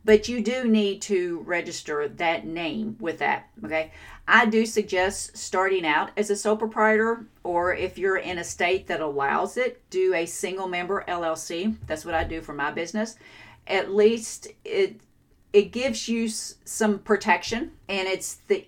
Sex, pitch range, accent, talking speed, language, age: female, 175-220 Hz, American, 165 wpm, English, 40-59